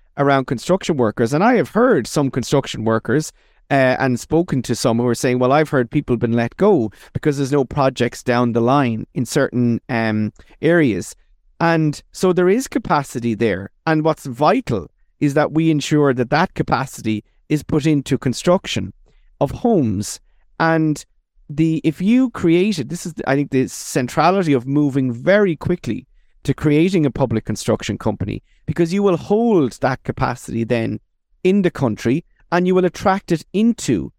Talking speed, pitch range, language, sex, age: 170 wpm, 130-175 Hz, English, male, 30-49